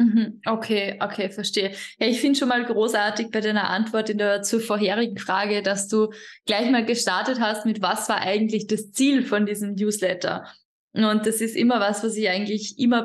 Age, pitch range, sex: 20-39, 200-230 Hz, female